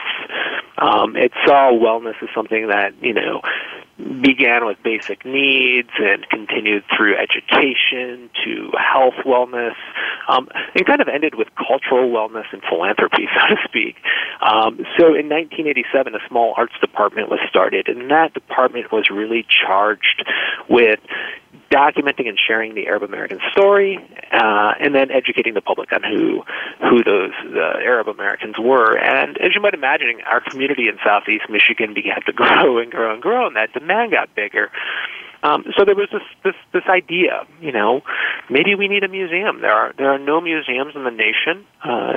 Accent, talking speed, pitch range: American, 170 wpm, 125-200 Hz